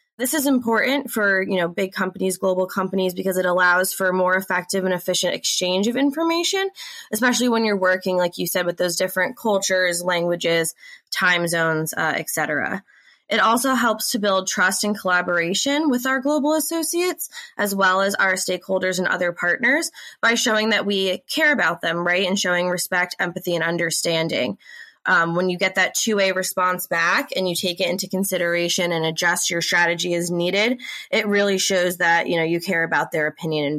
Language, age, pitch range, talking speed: English, 20-39, 175-225 Hz, 180 wpm